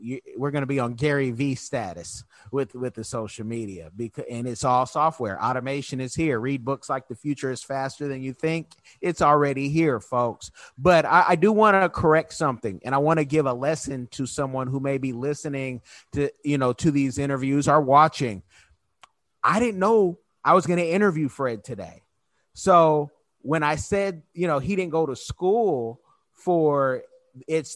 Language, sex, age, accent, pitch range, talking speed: English, male, 30-49, American, 135-190 Hz, 190 wpm